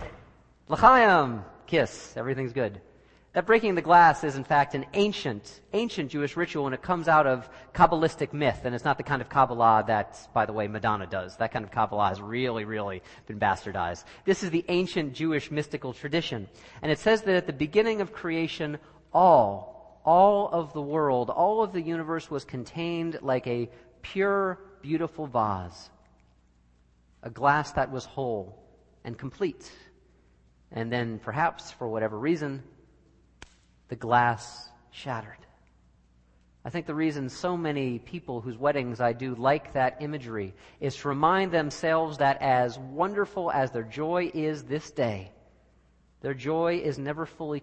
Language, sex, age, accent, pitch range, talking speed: English, male, 40-59, American, 115-160 Hz, 155 wpm